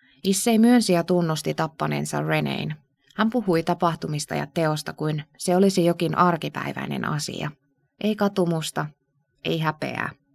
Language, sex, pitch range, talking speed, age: Finnish, female, 145-185 Hz, 120 wpm, 20-39